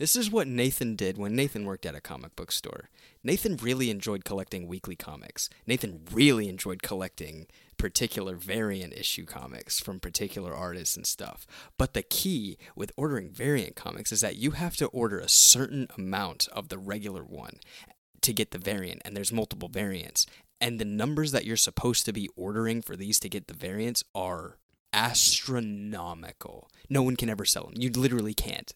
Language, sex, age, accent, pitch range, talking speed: English, male, 20-39, American, 95-120 Hz, 180 wpm